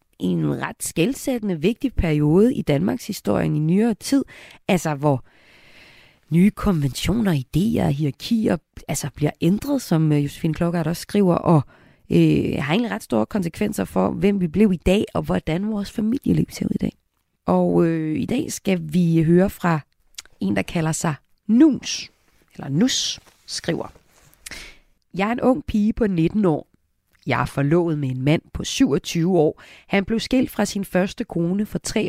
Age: 30-49